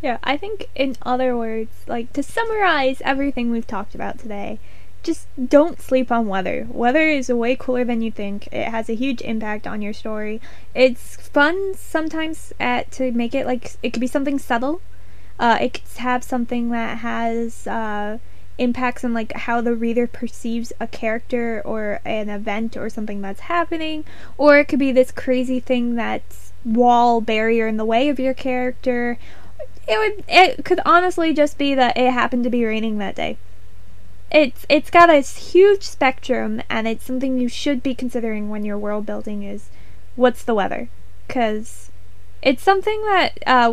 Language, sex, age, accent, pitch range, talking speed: English, female, 10-29, American, 215-265 Hz, 175 wpm